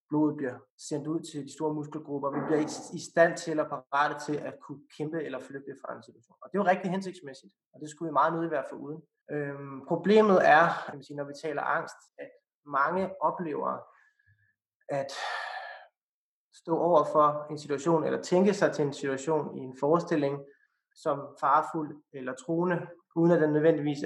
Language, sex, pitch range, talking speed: Danish, male, 145-170 Hz, 180 wpm